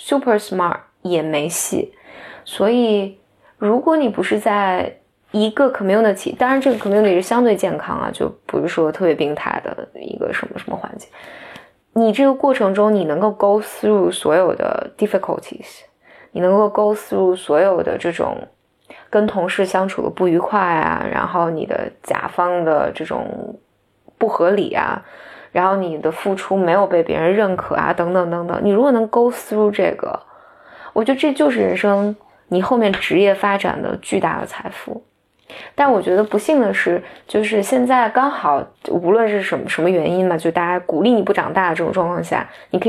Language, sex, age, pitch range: Chinese, female, 20-39, 180-230 Hz